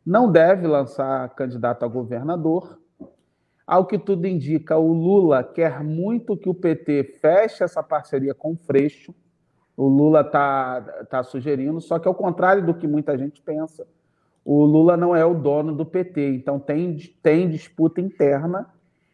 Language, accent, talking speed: Portuguese, Brazilian, 155 wpm